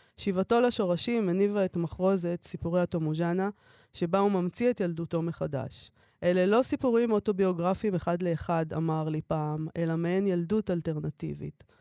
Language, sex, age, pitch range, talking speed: Hebrew, female, 20-39, 165-200 Hz, 130 wpm